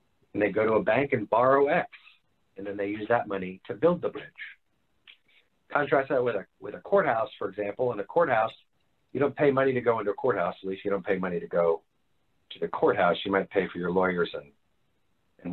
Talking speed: 230 wpm